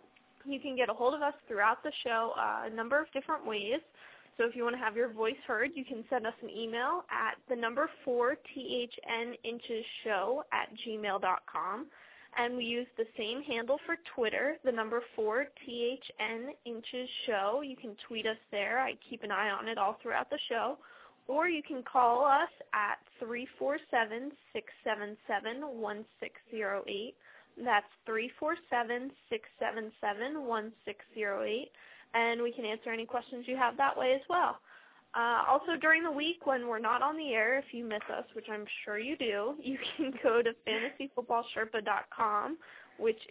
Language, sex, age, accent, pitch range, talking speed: English, female, 10-29, American, 220-270 Hz, 155 wpm